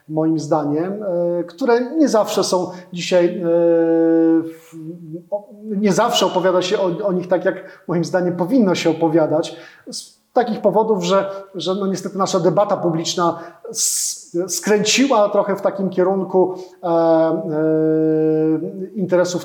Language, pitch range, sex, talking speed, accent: Polish, 165-195 Hz, male, 110 wpm, native